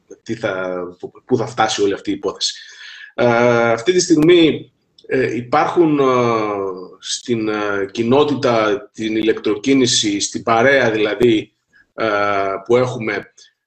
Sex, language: male, Greek